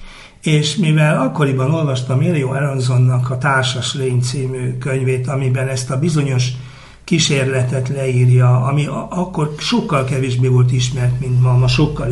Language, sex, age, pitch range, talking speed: Hungarian, male, 60-79, 130-170 Hz, 135 wpm